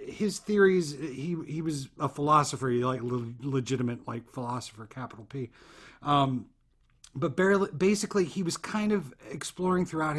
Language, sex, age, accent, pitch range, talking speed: English, male, 40-59, American, 125-160 Hz, 140 wpm